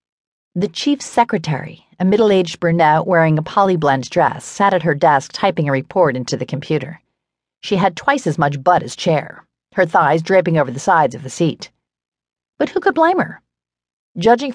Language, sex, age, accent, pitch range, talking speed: English, female, 40-59, American, 155-225 Hz, 175 wpm